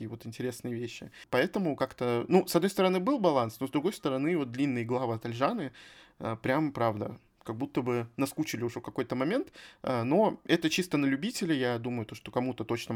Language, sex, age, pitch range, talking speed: Russian, male, 20-39, 120-155 Hz, 185 wpm